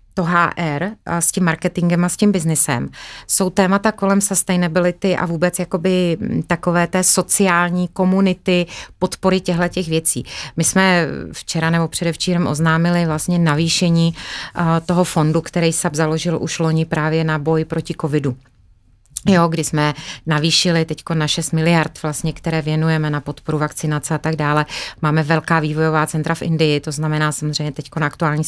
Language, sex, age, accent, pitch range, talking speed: Czech, female, 30-49, native, 155-185 Hz, 155 wpm